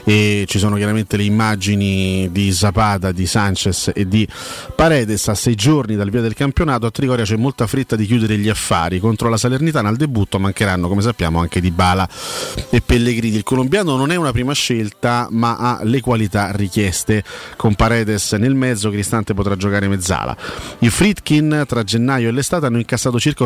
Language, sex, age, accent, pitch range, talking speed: Italian, male, 30-49, native, 100-125 Hz, 180 wpm